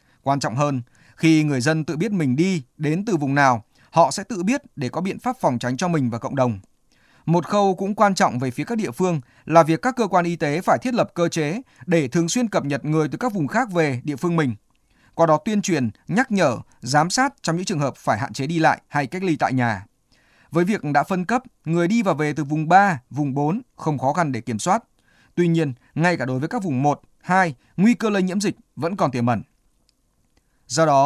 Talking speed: 245 wpm